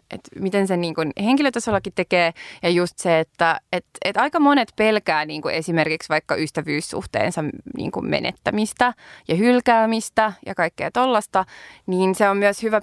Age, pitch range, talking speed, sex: 20-39, 165-200 Hz, 145 wpm, female